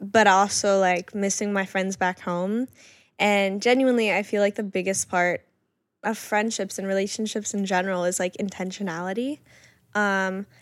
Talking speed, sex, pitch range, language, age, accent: 145 wpm, female, 190-230 Hz, English, 10-29, American